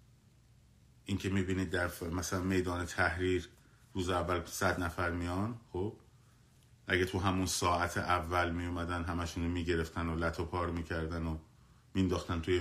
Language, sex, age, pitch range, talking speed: Persian, male, 30-49, 85-115 Hz, 130 wpm